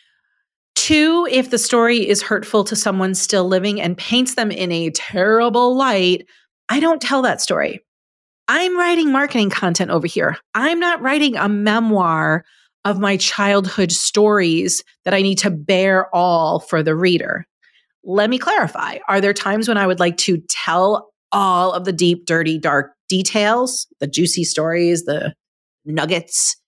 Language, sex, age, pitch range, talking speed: English, female, 30-49, 180-235 Hz, 155 wpm